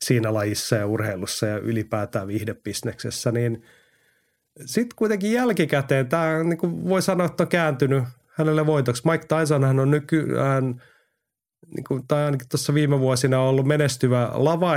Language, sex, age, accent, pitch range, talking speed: Finnish, male, 30-49, native, 115-150 Hz, 140 wpm